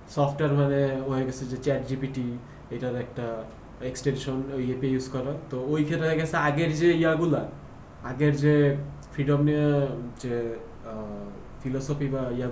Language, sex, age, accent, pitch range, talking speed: English, male, 20-39, Indian, 130-160 Hz, 110 wpm